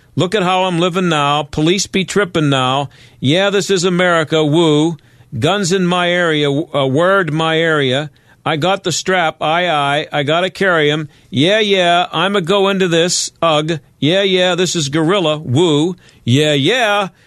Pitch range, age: 145-185 Hz, 50-69